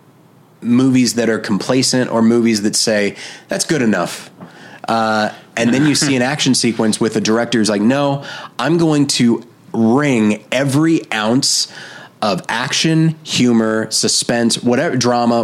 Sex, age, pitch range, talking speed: male, 30-49, 110-140 Hz, 140 wpm